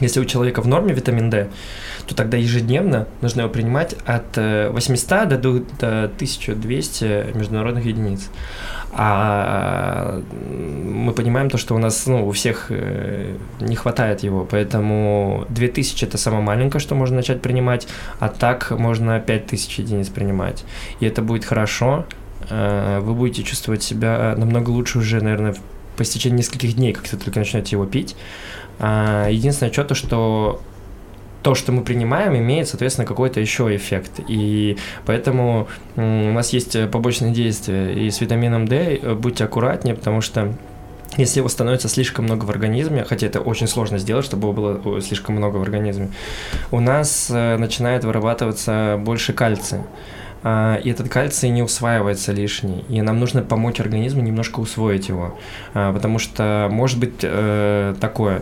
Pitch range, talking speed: 100-120 Hz, 145 wpm